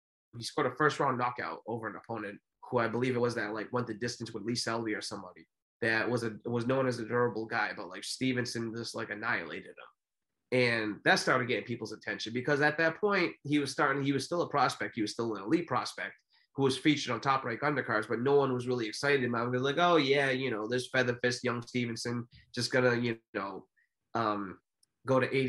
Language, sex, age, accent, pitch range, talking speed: English, male, 20-39, American, 110-130 Hz, 235 wpm